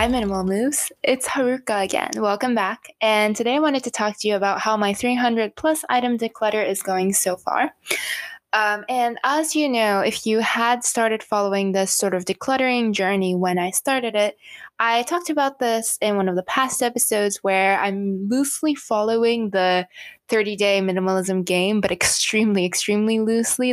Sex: female